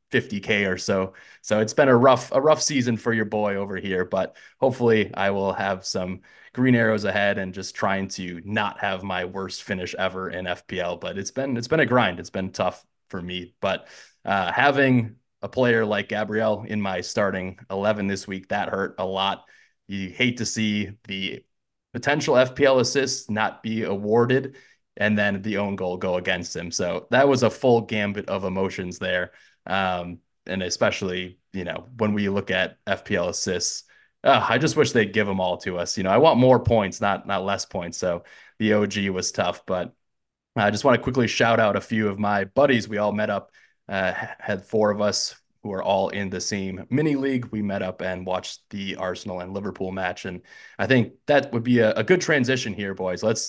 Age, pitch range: 20-39, 95-115 Hz